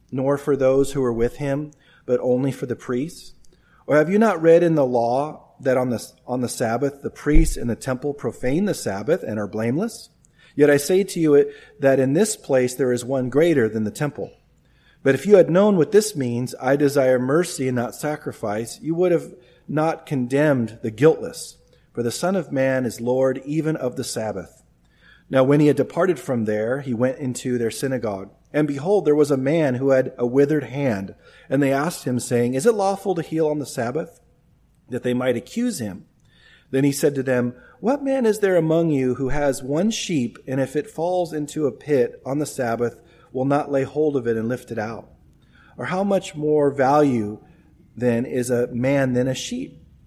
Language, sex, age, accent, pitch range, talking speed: English, male, 40-59, American, 125-155 Hz, 205 wpm